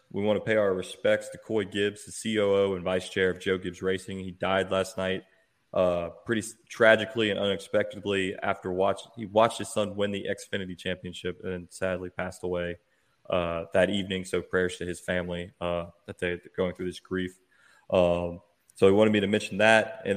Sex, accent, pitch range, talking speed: male, American, 95-110 Hz, 190 wpm